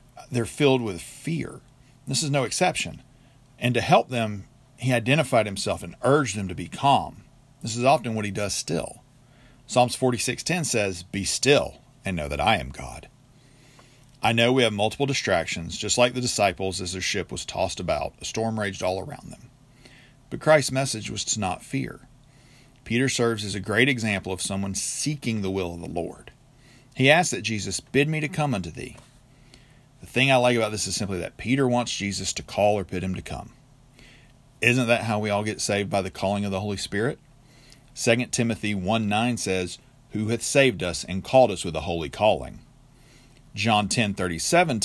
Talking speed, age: 190 wpm, 40-59